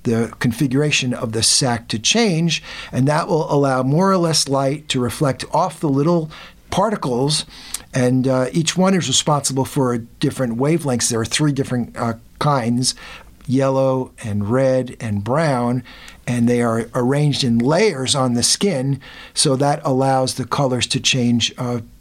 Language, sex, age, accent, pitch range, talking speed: English, male, 50-69, American, 125-155 Hz, 160 wpm